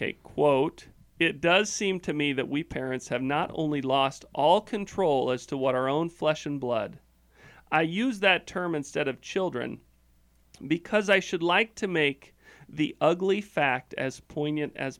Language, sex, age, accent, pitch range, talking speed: English, male, 40-59, American, 135-180 Hz, 170 wpm